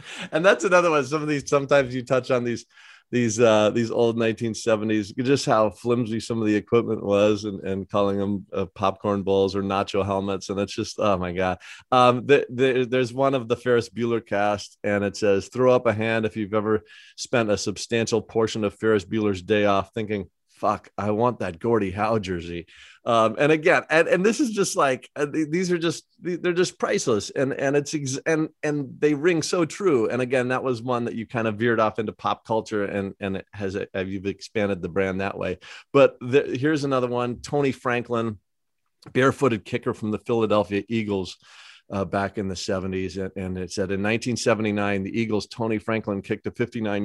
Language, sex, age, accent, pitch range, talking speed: English, male, 30-49, American, 105-135 Hz, 200 wpm